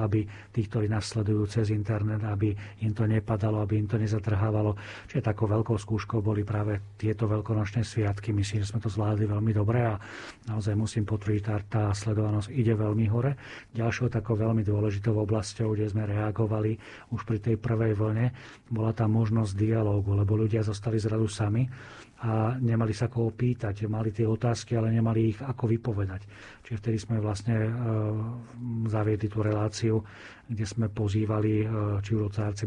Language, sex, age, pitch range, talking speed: Slovak, male, 40-59, 105-115 Hz, 155 wpm